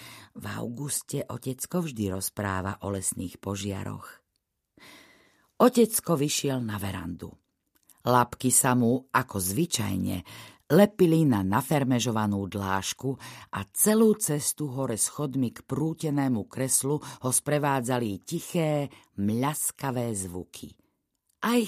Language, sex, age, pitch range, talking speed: Slovak, female, 50-69, 95-130 Hz, 95 wpm